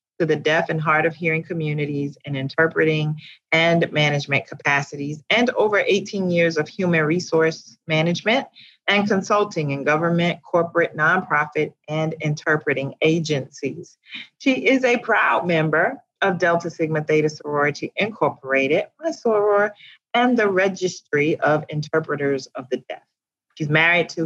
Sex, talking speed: female, 130 wpm